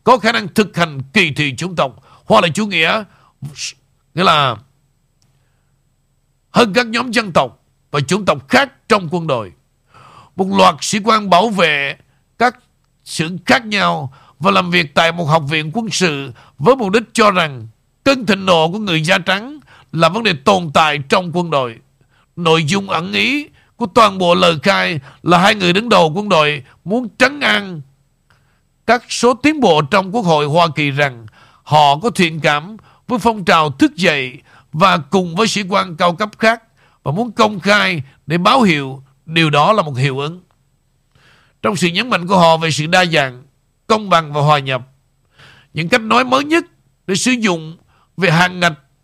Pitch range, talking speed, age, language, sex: 140-205 Hz, 185 wpm, 60-79, Vietnamese, male